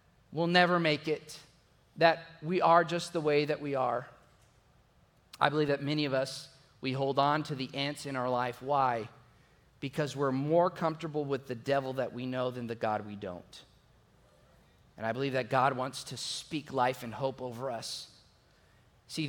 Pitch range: 140-190 Hz